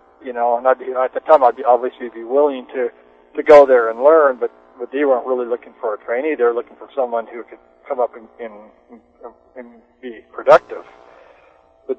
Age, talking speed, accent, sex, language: 40-59, 215 wpm, American, male, English